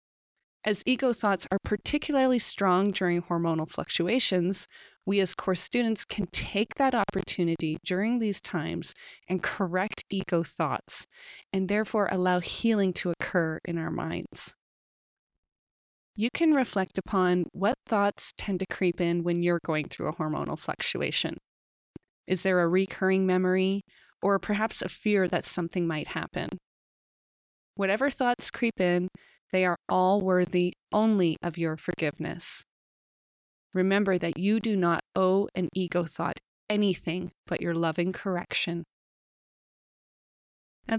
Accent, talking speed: American, 130 wpm